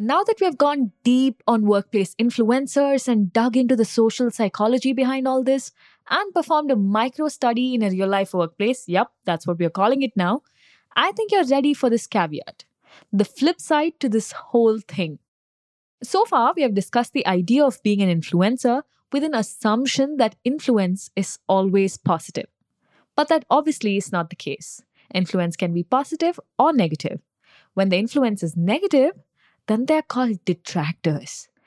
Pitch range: 195-275 Hz